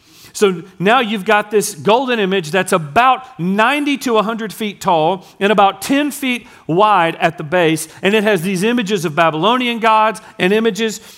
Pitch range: 170-225 Hz